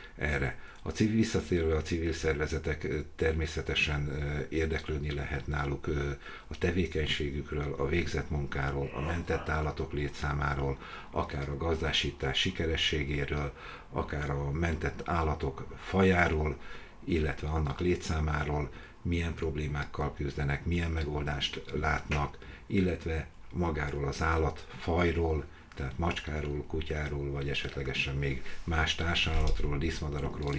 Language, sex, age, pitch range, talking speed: Hungarian, male, 60-79, 70-85 Hz, 100 wpm